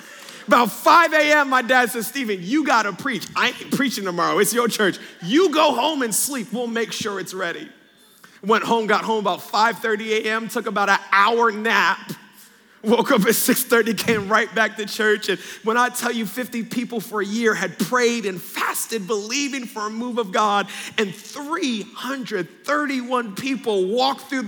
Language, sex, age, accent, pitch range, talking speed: English, male, 40-59, American, 200-245 Hz, 180 wpm